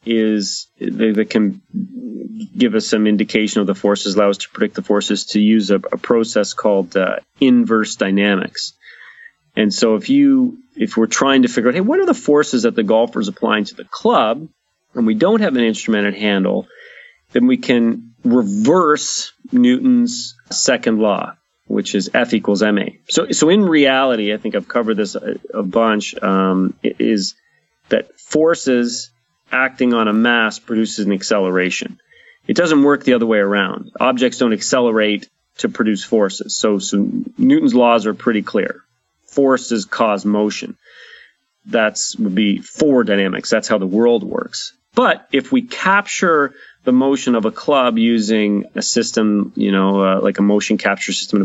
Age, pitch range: 30-49, 105-145 Hz